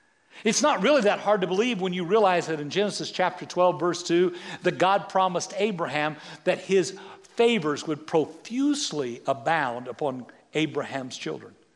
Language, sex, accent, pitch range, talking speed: English, male, American, 170-235 Hz, 155 wpm